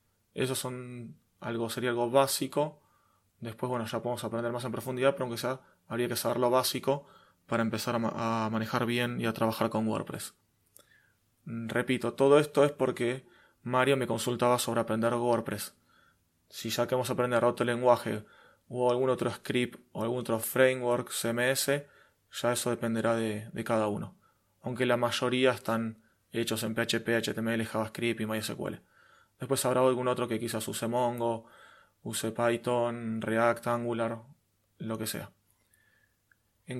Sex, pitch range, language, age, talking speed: male, 115-130 Hz, Spanish, 20-39, 150 wpm